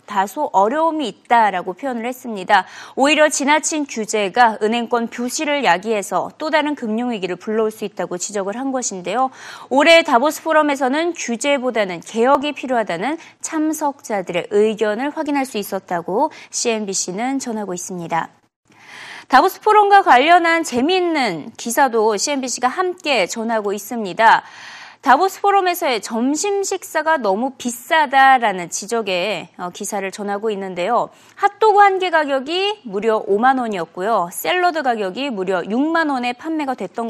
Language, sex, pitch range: Korean, female, 205-310 Hz